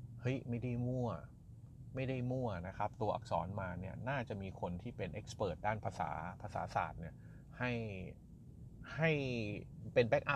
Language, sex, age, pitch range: Thai, male, 30-49, 95-125 Hz